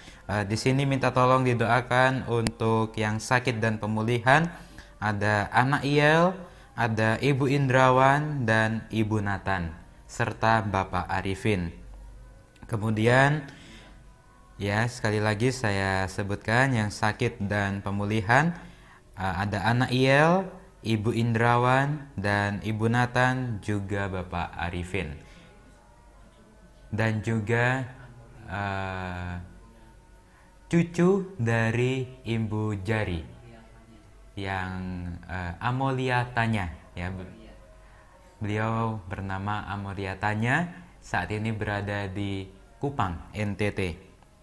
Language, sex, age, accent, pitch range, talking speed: Indonesian, male, 20-39, native, 100-125 Hz, 90 wpm